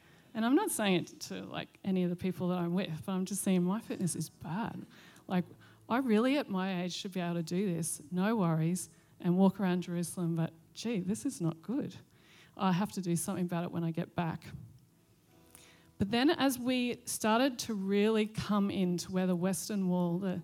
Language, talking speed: English, 205 wpm